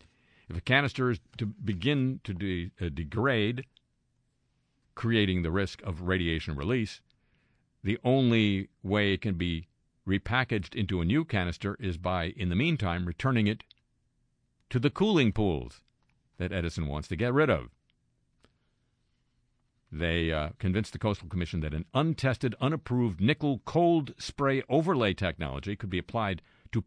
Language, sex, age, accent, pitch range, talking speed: English, male, 50-69, American, 85-120 Hz, 140 wpm